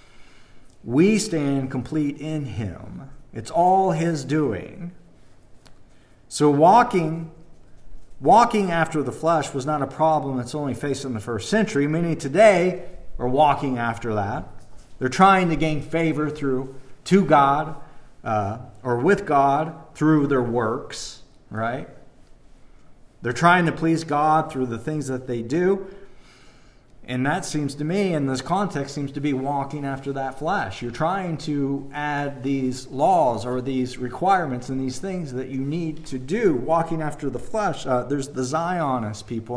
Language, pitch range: English, 125-160 Hz